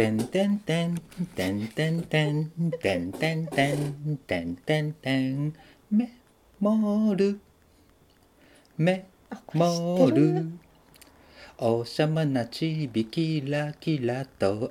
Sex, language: male, Japanese